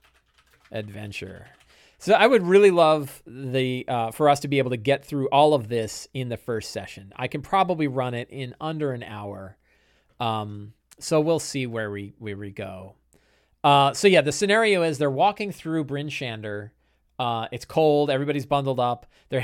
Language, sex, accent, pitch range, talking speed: English, male, American, 115-155 Hz, 180 wpm